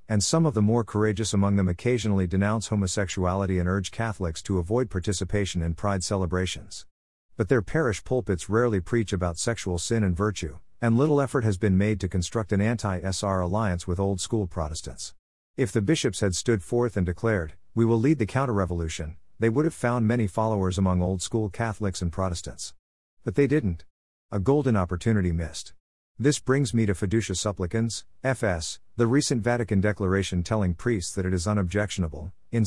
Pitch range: 90-115 Hz